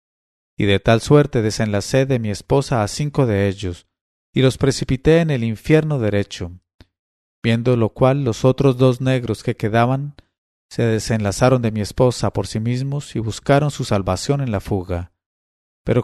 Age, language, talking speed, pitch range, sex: 40-59, English, 165 wpm, 105-130 Hz, male